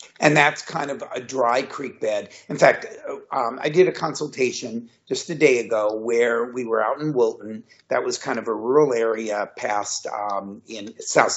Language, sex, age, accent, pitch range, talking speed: English, male, 50-69, American, 115-140 Hz, 190 wpm